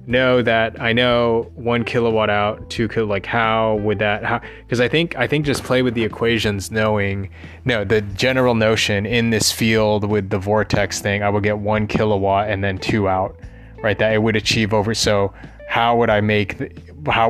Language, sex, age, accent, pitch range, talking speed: English, male, 20-39, American, 100-115 Hz, 195 wpm